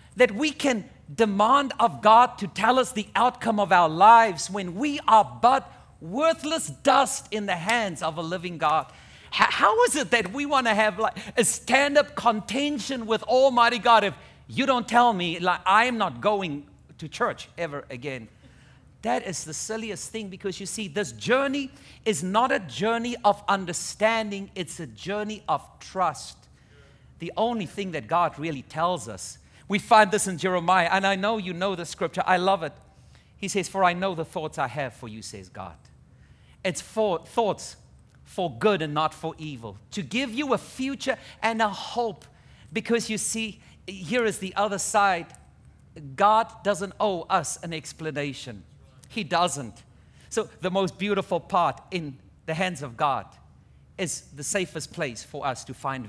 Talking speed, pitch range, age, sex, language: 175 wpm, 160-225 Hz, 50-69, male, English